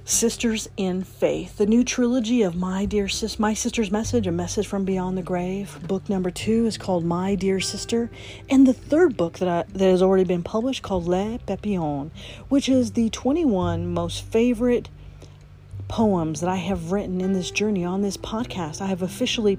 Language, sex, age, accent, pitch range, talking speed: English, female, 40-59, American, 180-225 Hz, 185 wpm